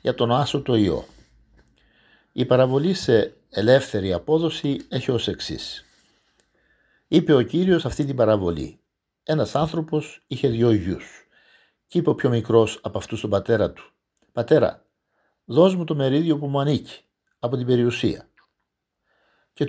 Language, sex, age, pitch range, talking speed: Greek, male, 50-69, 105-165 Hz, 140 wpm